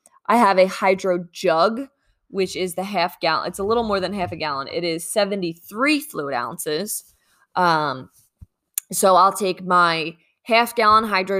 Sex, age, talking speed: female, 20-39, 165 wpm